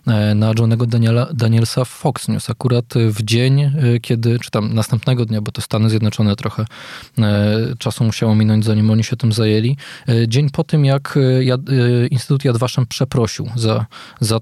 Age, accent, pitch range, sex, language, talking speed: 20-39, native, 110-135 Hz, male, Polish, 170 wpm